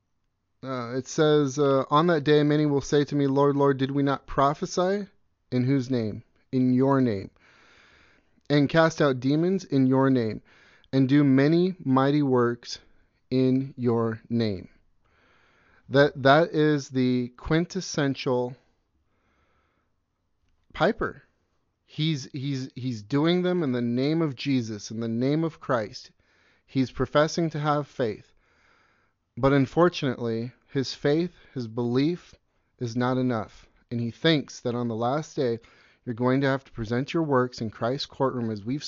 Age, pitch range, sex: 30-49, 125-150 Hz, male